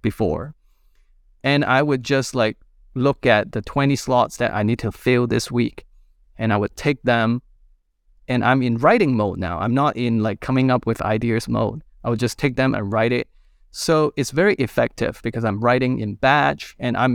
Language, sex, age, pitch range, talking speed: English, male, 30-49, 110-135 Hz, 200 wpm